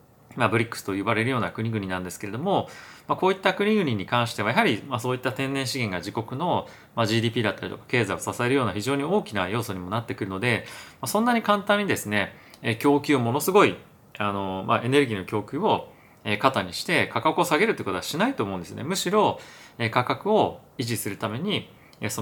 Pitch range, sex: 105-140 Hz, male